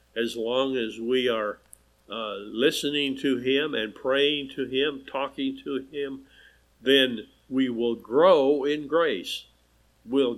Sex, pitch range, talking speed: male, 115-140 Hz, 135 wpm